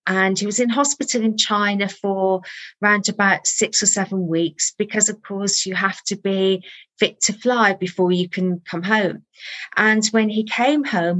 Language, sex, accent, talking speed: English, female, British, 180 wpm